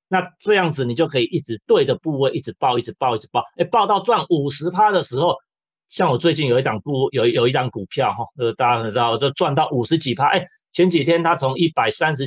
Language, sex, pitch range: Chinese, male, 120-160 Hz